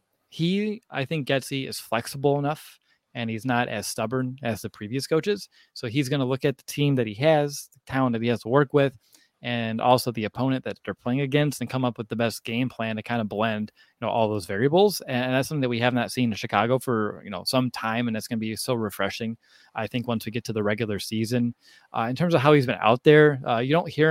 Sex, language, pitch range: male, English, 110-135 Hz